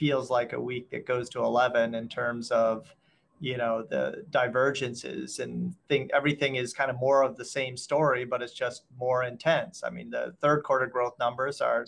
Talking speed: 195 wpm